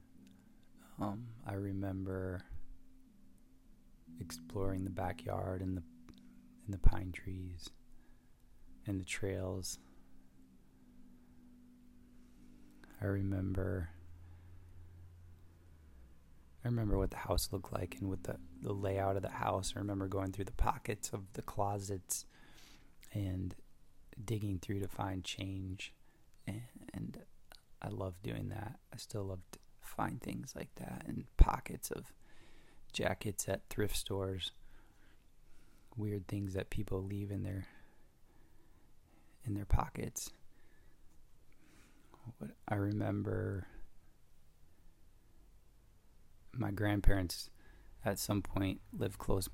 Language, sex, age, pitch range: English, male, 20-39, 85-100 Hz